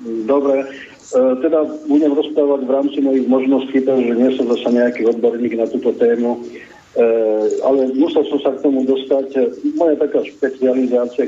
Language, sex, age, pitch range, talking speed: Slovak, male, 50-69, 120-140 Hz, 155 wpm